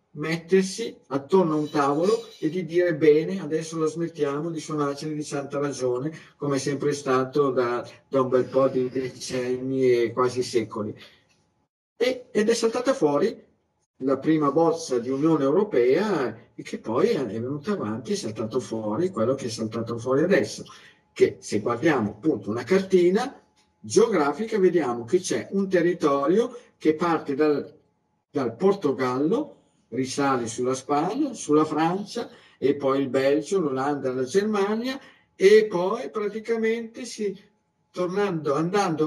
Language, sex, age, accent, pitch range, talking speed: Italian, male, 50-69, native, 135-215 Hz, 145 wpm